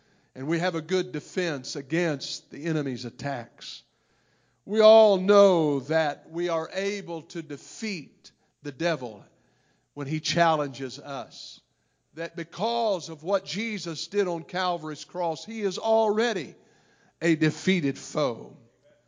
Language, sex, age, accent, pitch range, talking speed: English, male, 50-69, American, 155-200 Hz, 125 wpm